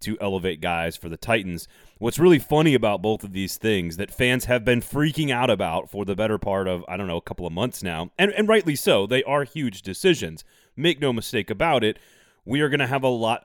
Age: 30-49